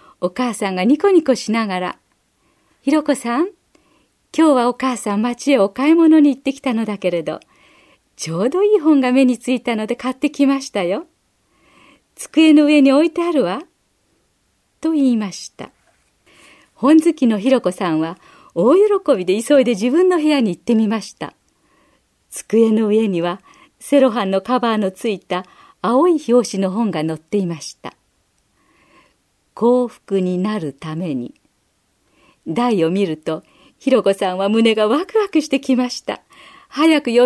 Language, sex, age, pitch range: Japanese, female, 40-59, 200-295 Hz